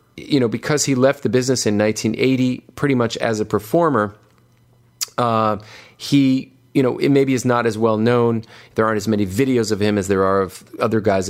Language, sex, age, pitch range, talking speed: English, male, 40-59, 95-120 Hz, 200 wpm